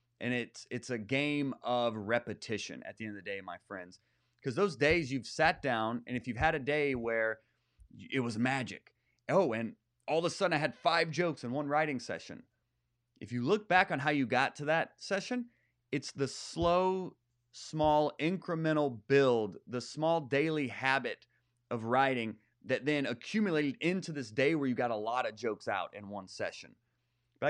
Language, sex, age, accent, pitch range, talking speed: English, male, 30-49, American, 120-155 Hz, 190 wpm